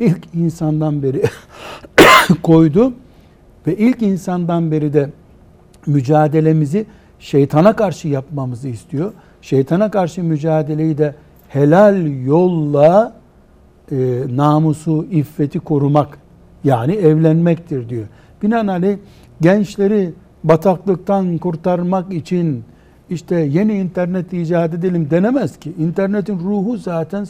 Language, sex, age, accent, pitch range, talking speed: Turkish, male, 60-79, native, 145-180 Hz, 90 wpm